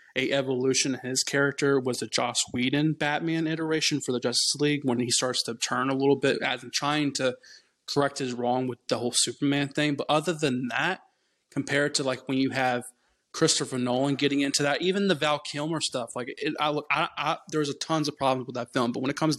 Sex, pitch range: male, 130-150 Hz